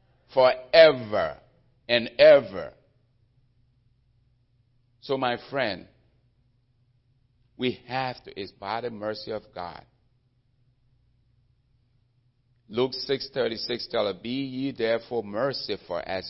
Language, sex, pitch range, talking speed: English, male, 115-125 Hz, 90 wpm